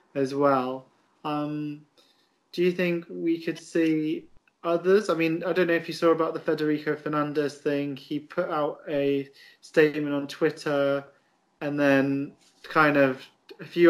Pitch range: 140-175 Hz